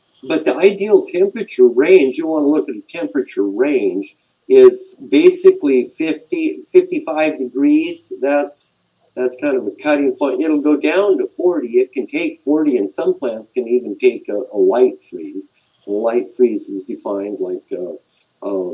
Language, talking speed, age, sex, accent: English, 165 wpm, 50-69, male, American